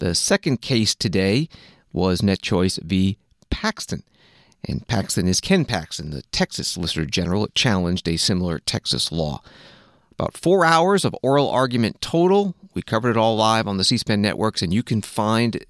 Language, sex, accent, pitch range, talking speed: English, male, American, 95-125 Hz, 160 wpm